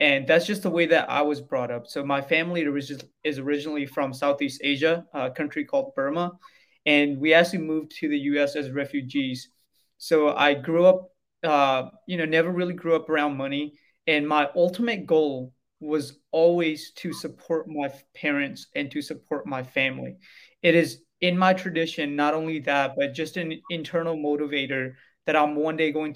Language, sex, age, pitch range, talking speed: English, male, 20-39, 145-175 Hz, 175 wpm